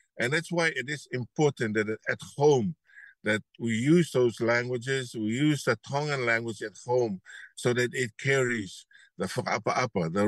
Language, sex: English, male